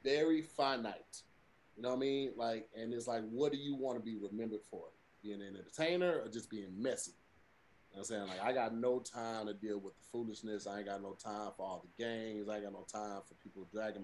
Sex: male